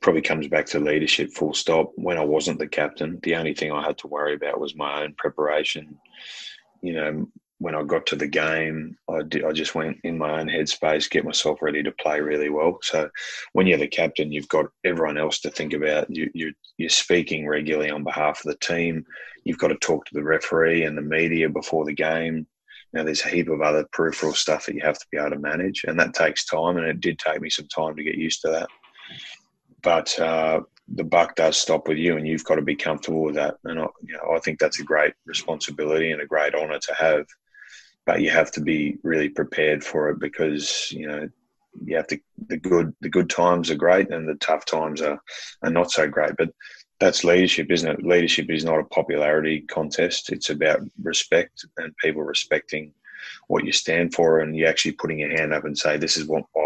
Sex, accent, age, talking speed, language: male, Australian, 20-39, 220 wpm, English